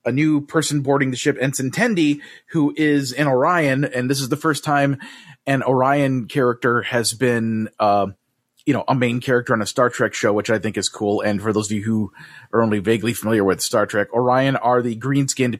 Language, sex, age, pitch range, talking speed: English, male, 30-49, 115-140 Hz, 215 wpm